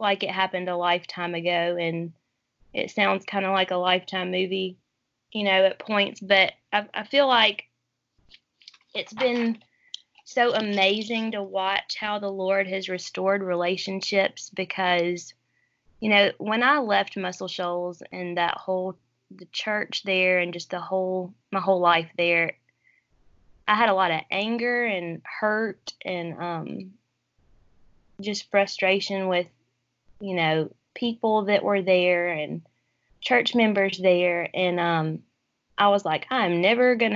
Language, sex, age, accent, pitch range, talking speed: English, female, 20-39, American, 180-210 Hz, 145 wpm